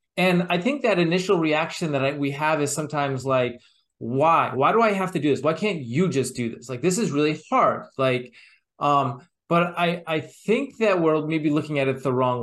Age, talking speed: 30-49, 215 wpm